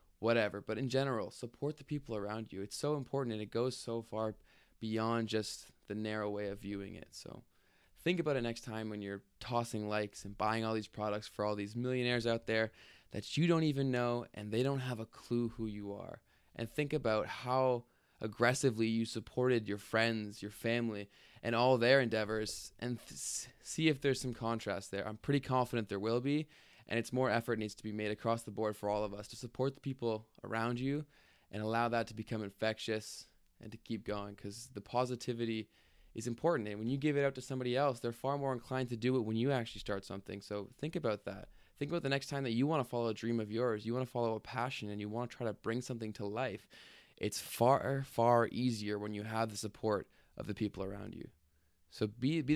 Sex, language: male, English